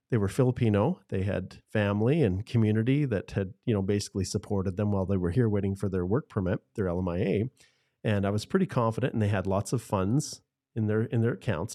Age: 40-59